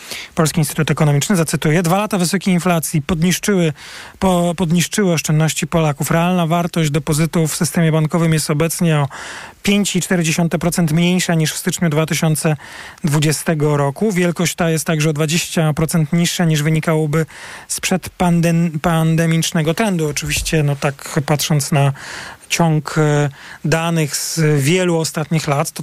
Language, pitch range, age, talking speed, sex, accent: Polish, 160-185 Hz, 40-59, 120 wpm, male, native